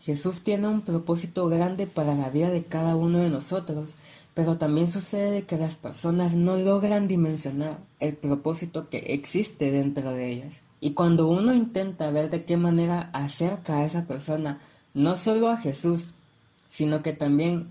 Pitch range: 145-175 Hz